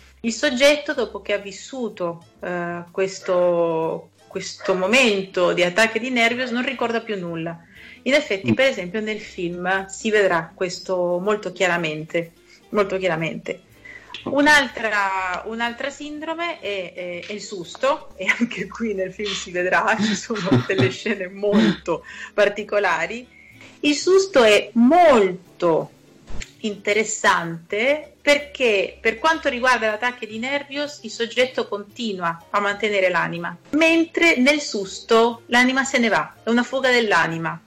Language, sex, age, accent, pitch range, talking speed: Italian, female, 30-49, native, 190-255 Hz, 130 wpm